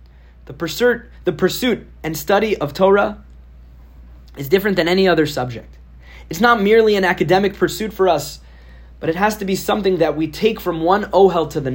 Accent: American